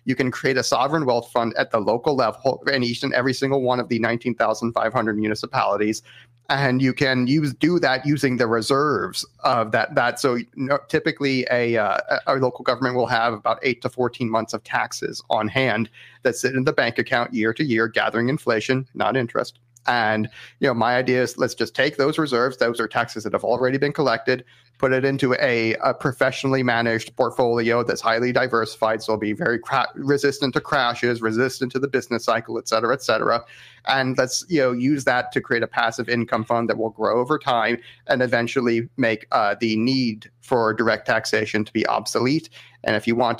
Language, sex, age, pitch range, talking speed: English, male, 30-49, 115-130 Hz, 200 wpm